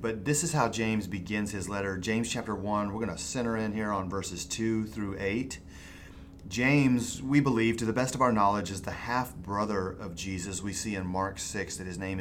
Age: 30-49